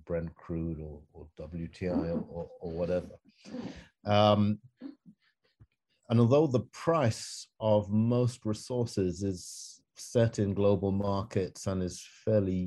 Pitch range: 90-105 Hz